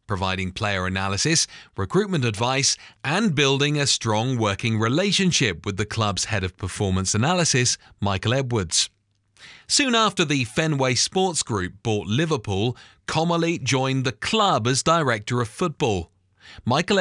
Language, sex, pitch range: English, male, 105-165 Hz